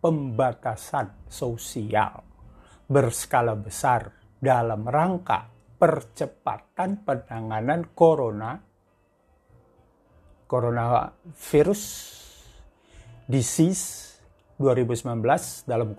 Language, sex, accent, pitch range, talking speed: Indonesian, male, native, 110-155 Hz, 45 wpm